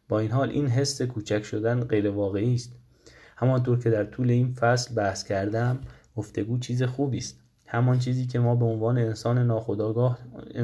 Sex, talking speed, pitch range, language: male, 165 wpm, 110-130 Hz, Persian